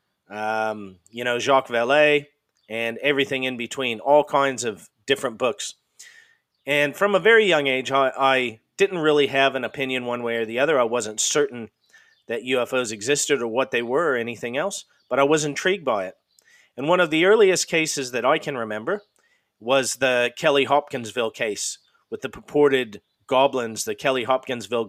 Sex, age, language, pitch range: male, 40-59, English, 120-145 Hz